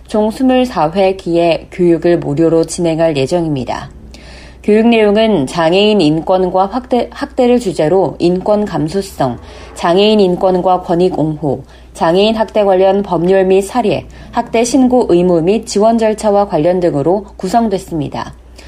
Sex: female